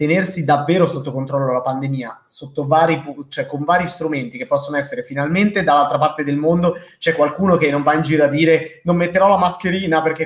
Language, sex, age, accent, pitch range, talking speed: Italian, male, 30-49, native, 135-165 Hz, 200 wpm